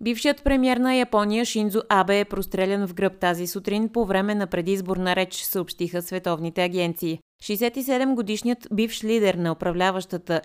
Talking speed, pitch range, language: 145 wpm, 180-225 Hz, Bulgarian